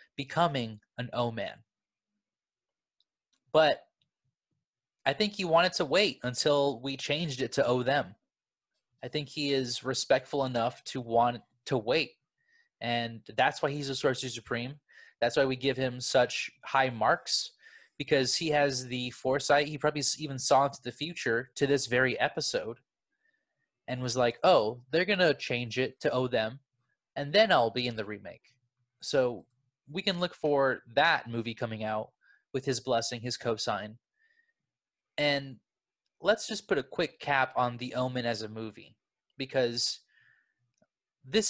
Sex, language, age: male, English, 20-39